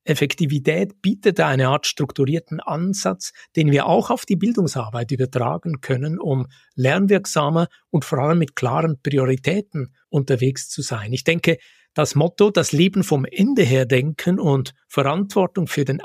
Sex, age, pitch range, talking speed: male, 60-79, 135-175 Hz, 145 wpm